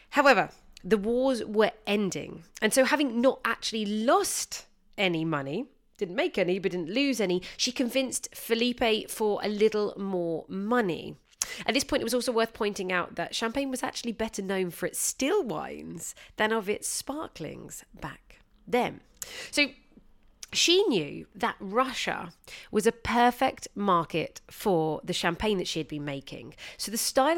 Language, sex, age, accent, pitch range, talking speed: English, female, 30-49, British, 180-245 Hz, 160 wpm